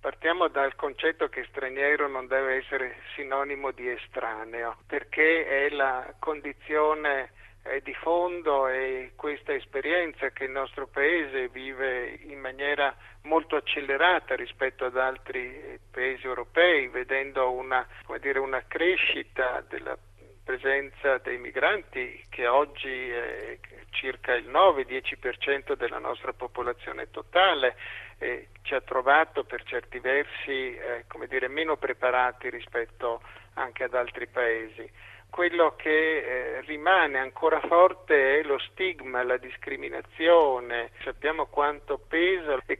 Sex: male